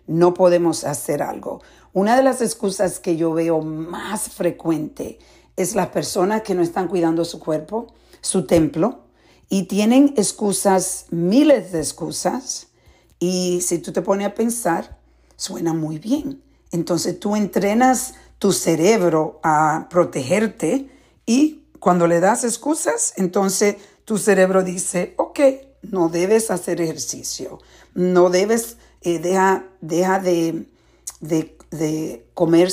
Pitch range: 165-200 Hz